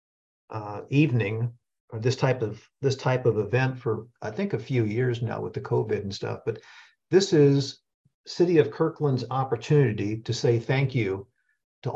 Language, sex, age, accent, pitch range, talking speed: English, male, 50-69, American, 115-145 Hz, 170 wpm